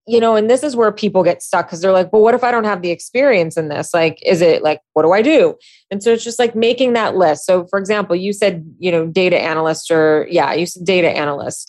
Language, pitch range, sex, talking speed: English, 175-225 Hz, female, 270 wpm